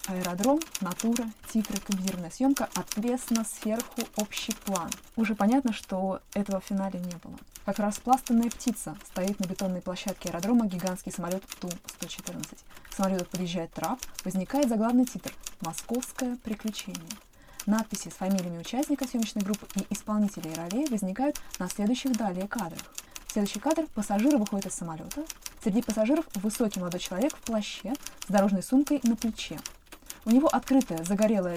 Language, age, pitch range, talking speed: Russian, 20-39, 190-245 Hz, 145 wpm